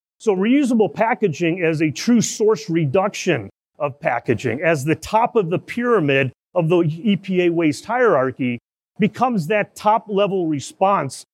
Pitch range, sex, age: 150-200 Hz, male, 40-59